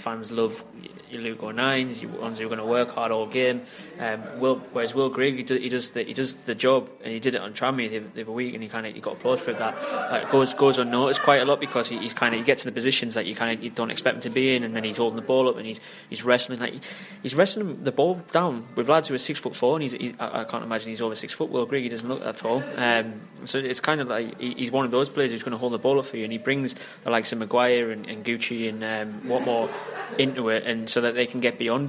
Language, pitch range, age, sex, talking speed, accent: English, 115-125 Hz, 20-39, male, 295 wpm, British